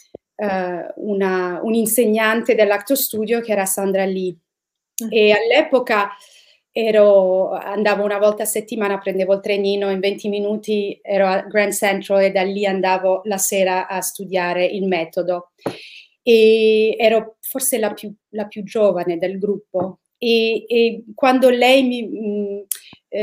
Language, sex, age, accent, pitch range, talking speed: Italian, female, 30-49, native, 195-230 Hz, 135 wpm